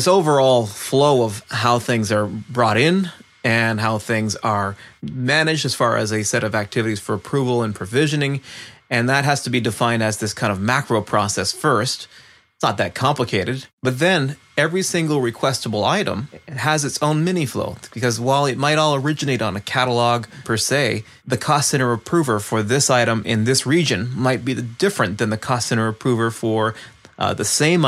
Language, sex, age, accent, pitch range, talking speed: English, male, 30-49, American, 110-135 Hz, 185 wpm